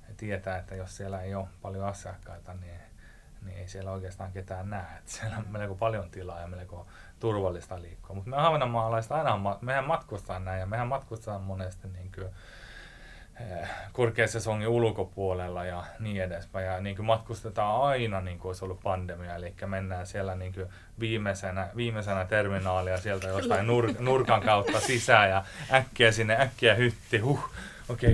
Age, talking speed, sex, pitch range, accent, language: 30-49, 155 wpm, male, 95-115 Hz, native, Finnish